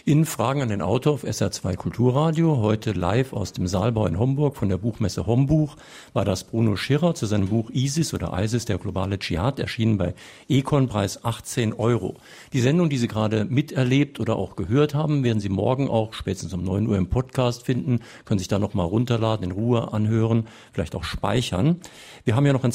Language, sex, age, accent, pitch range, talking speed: German, male, 50-69, German, 105-130 Hz, 200 wpm